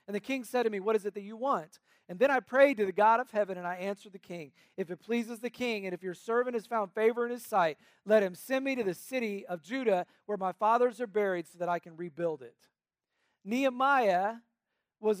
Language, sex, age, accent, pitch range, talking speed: English, male, 40-59, American, 190-235 Hz, 250 wpm